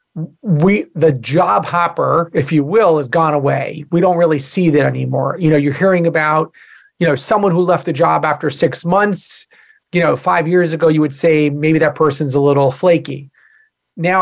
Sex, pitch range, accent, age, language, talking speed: male, 150-180 Hz, American, 40-59, English, 195 wpm